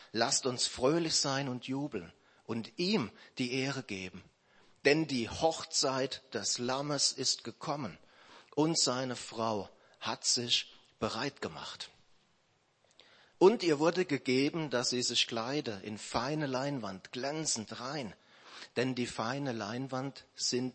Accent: German